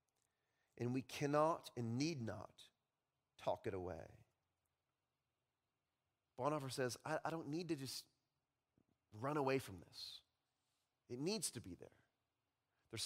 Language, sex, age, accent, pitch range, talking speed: English, male, 30-49, American, 125-195 Hz, 125 wpm